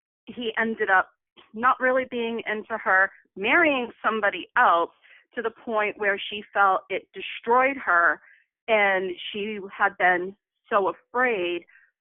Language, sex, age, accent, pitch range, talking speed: English, female, 40-59, American, 190-240 Hz, 130 wpm